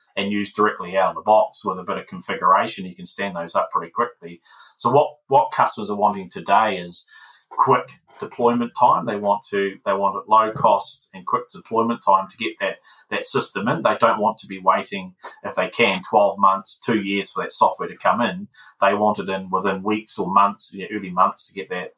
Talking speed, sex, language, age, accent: 225 wpm, male, English, 30-49, Australian